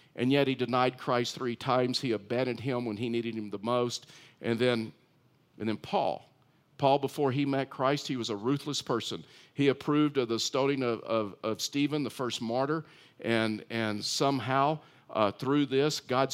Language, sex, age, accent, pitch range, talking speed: English, male, 50-69, American, 120-150 Hz, 185 wpm